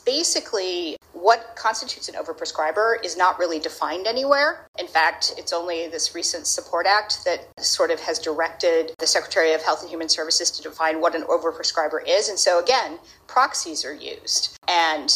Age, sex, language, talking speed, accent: 40-59, female, English, 170 wpm, American